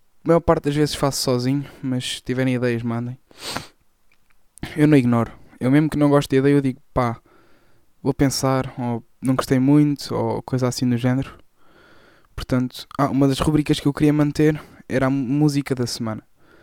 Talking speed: 180 wpm